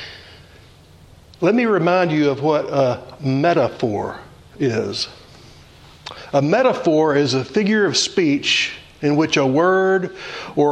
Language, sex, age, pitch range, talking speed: English, male, 60-79, 145-190 Hz, 120 wpm